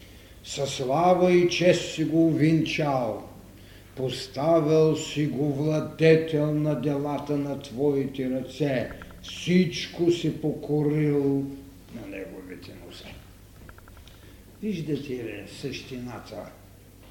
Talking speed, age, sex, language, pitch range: 90 wpm, 70-89, male, Bulgarian, 105-175 Hz